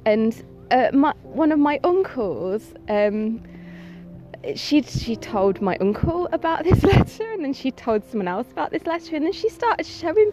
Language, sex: English, female